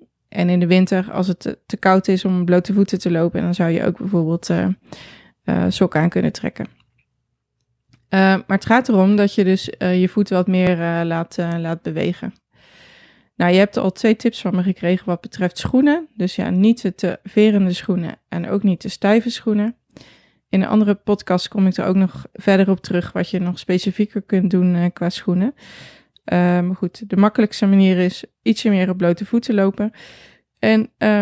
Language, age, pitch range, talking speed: Dutch, 20-39, 180-210 Hz, 195 wpm